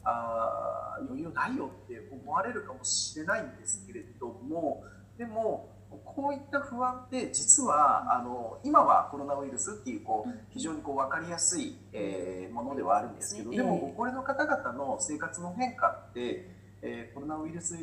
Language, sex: Japanese, male